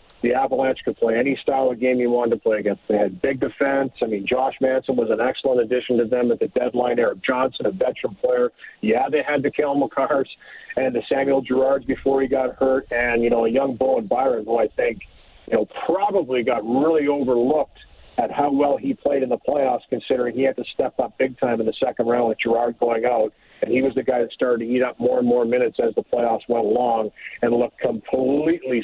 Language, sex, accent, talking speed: English, male, American, 230 wpm